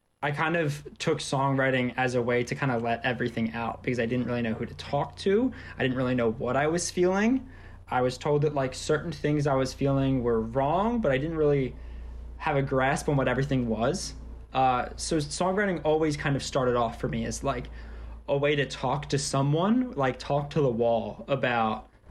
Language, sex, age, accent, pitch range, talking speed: English, male, 20-39, American, 115-145 Hz, 210 wpm